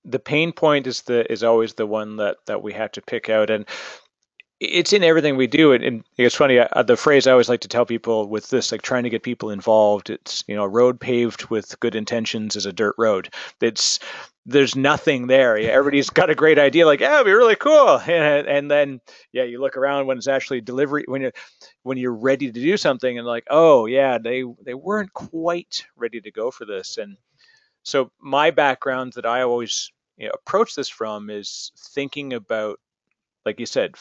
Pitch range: 120-155 Hz